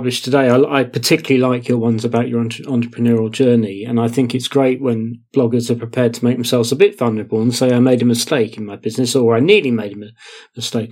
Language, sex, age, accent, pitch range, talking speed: English, male, 40-59, British, 115-145 Hz, 220 wpm